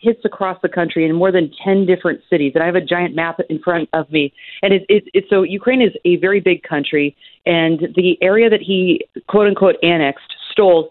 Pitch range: 170-215 Hz